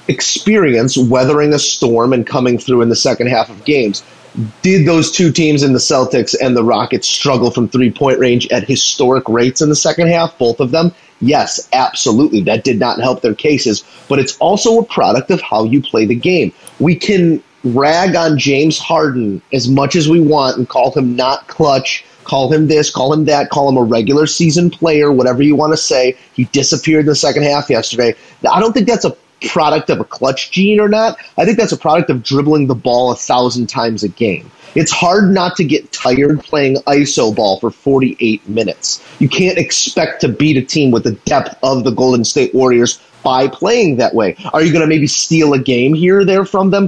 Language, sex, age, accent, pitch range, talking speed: English, male, 30-49, American, 125-165 Hz, 210 wpm